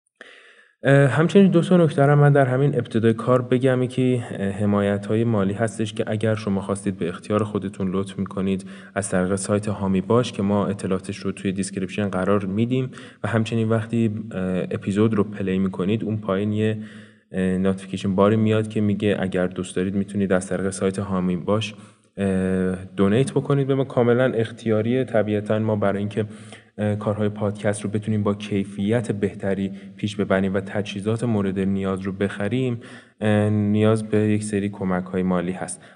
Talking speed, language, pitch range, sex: 155 wpm, Persian, 100-115 Hz, male